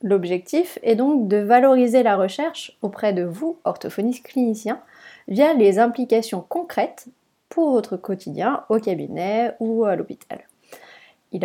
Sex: female